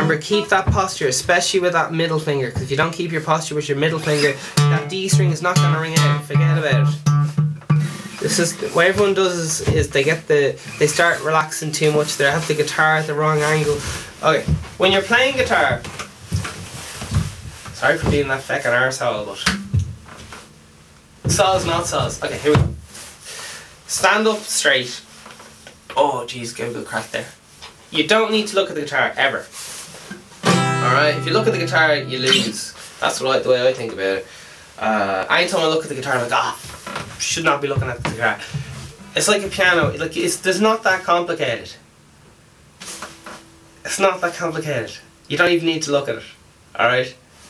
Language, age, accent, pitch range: English, 20-39, Irish, 130-185 Hz